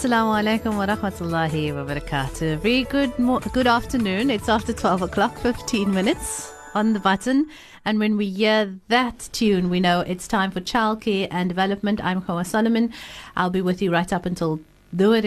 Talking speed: 180 wpm